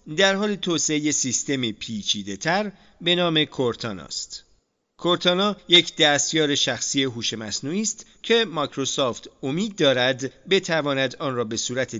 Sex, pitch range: male, 115-170 Hz